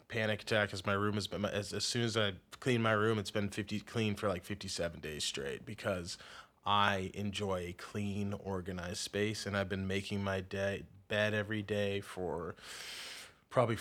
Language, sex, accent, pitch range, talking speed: English, male, American, 100-115 Hz, 180 wpm